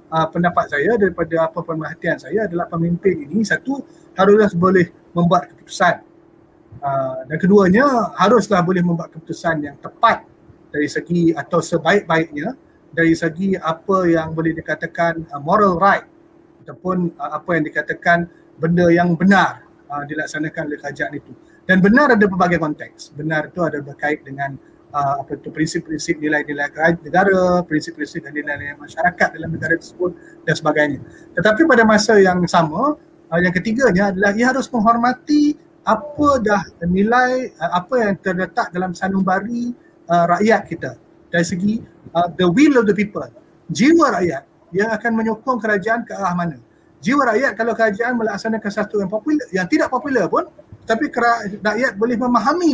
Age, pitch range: 30-49, 165-225 Hz